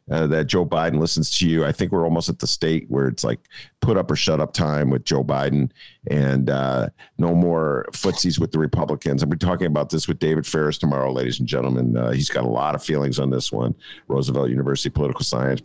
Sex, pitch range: male, 65-90 Hz